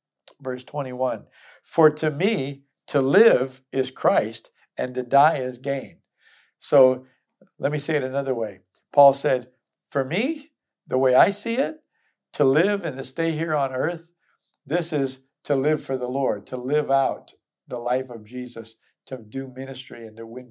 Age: 60-79